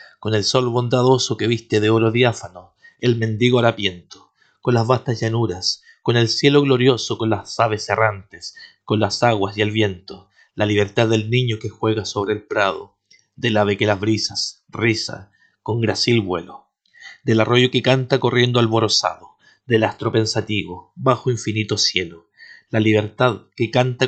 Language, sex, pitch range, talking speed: Spanish, male, 105-120 Hz, 160 wpm